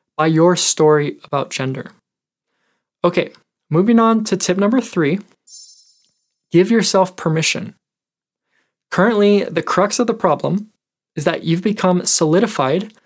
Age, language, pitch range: 20-39, English, 160-205 Hz